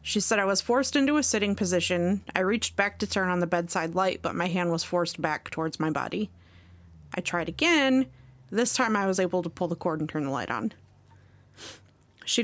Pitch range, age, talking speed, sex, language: 175-225 Hz, 30-49, 215 wpm, female, English